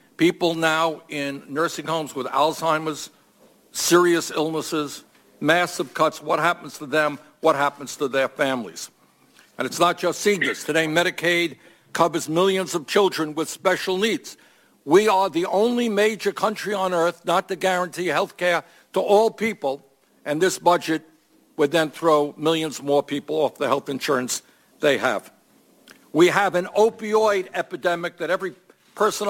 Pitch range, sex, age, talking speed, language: 155-195 Hz, male, 60-79, 150 wpm, English